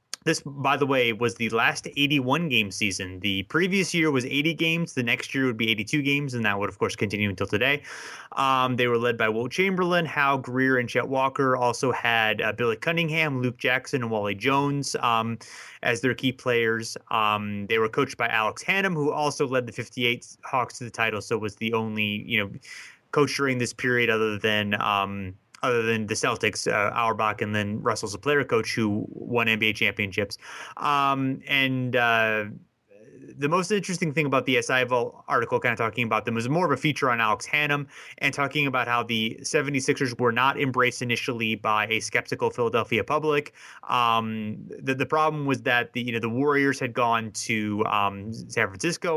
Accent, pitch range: American, 110-140 Hz